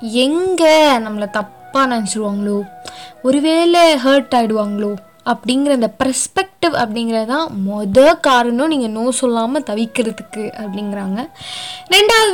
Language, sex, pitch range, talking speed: Tamil, female, 225-310 Hz, 90 wpm